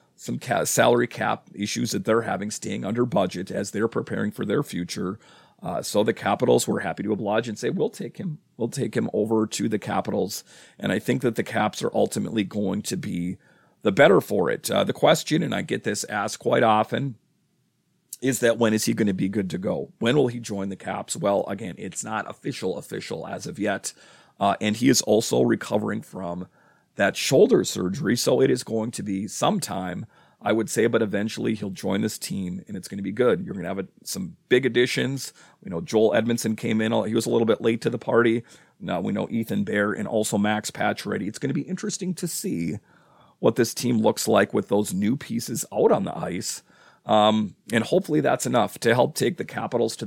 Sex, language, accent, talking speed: male, English, American, 220 wpm